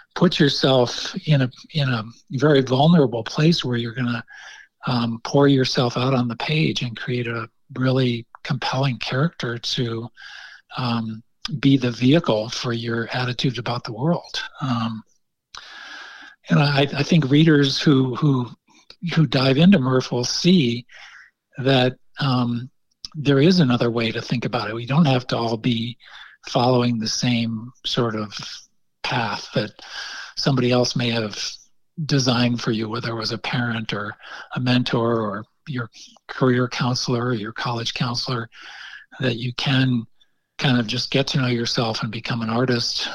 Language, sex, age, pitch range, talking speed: English, male, 50-69, 120-140 Hz, 155 wpm